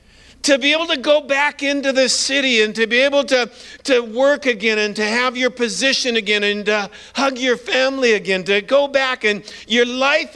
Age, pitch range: 50-69, 190-250 Hz